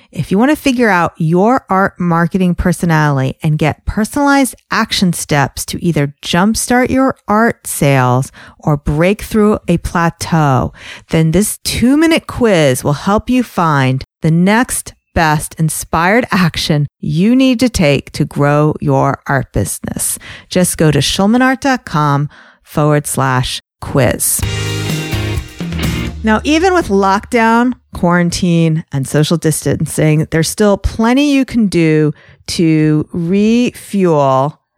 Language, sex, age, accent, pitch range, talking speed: English, female, 40-59, American, 150-210 Hz, 120 wpm